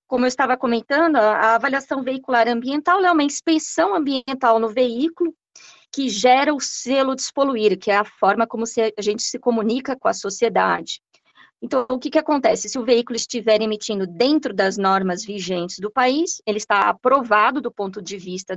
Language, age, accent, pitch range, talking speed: Portuguese, 20-39, Brazilian, 200-265 Hz, 175 wpm